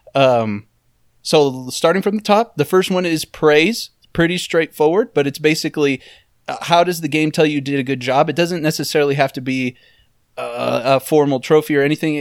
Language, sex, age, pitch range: English, male, 30-49, 130-155 Hz